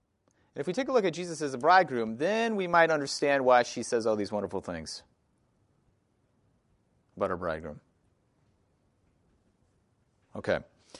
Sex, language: male, English